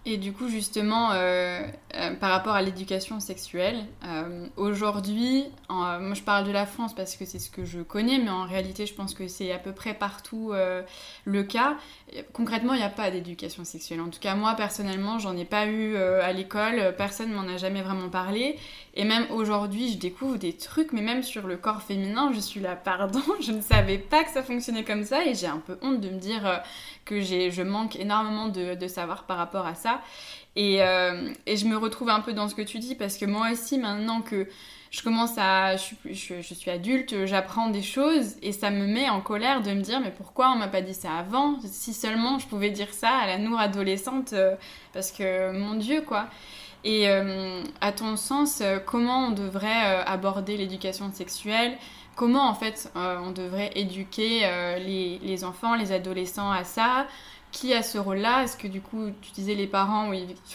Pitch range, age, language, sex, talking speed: 190-225 Hz, 20-39, French, female, 215 wpm